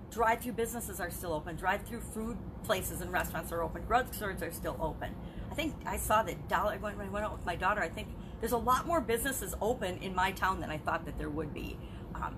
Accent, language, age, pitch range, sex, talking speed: American, English, 40-59, 185-245 Hz, female, 235 wpm